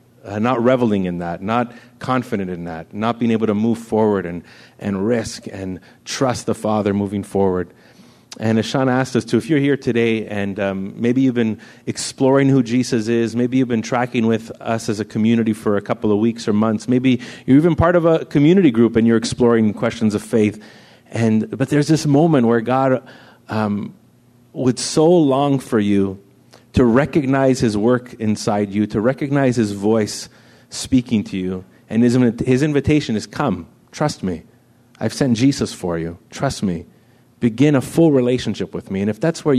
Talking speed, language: 185 wpm, English